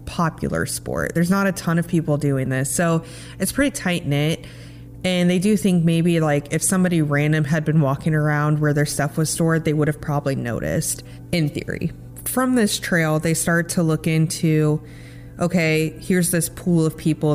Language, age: English, 20-39